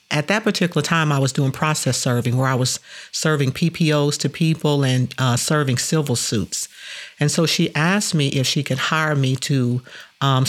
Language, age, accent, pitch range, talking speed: English, 50-69, American, 135-160 Hz, 190 wpm